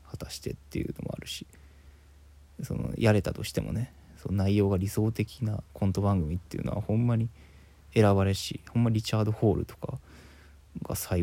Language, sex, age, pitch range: Japanese, male, 20-39, 75-105 Hz